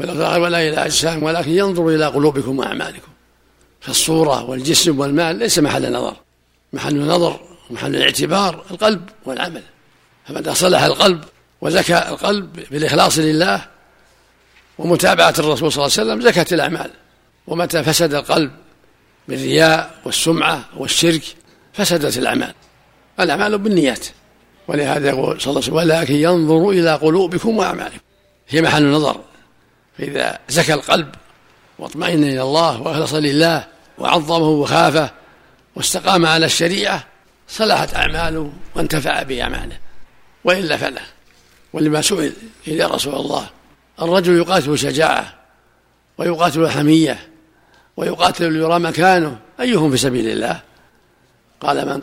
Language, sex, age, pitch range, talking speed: Arabic, male, 60-79, 145-175 Hz, 110 wpm